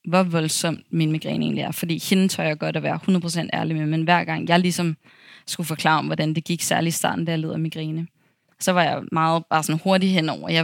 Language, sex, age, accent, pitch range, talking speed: Danish, female, 20-39, native, 165-195 Hz, 235 wpm